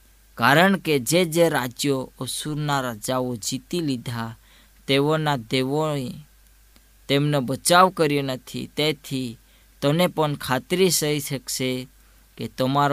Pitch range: 125-155 Hz